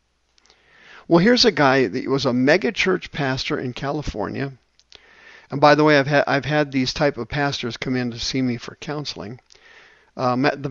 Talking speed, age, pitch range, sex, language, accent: 185 wpm, 50-69, 120-150 Hz, male, English, American